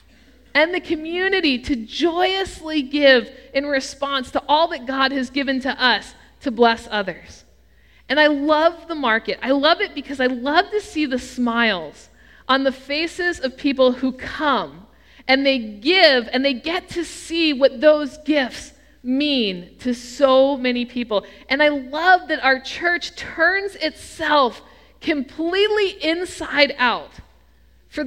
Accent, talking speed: American, 145 wpm